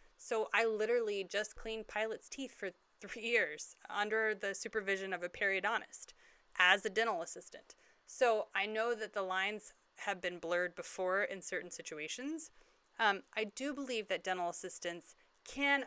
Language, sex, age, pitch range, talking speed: English, female, 30-49, 190-250 Hz, 155 wpm